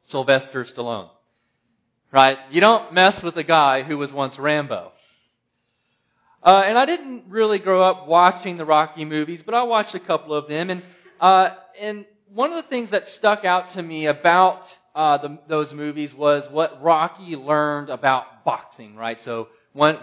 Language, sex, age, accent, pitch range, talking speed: English, male, 30-49, American, 145-195 Hz, 170 wpm